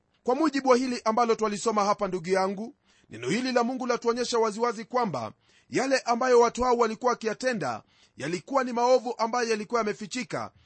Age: 30-49